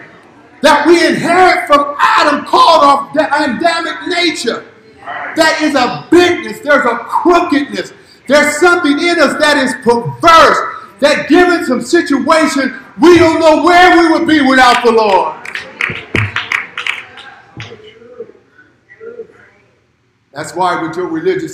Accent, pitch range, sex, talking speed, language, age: American, 280-340 Hz, male, 120 wpm, English, 50-69